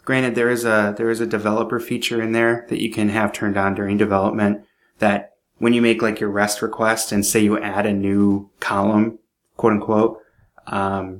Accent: American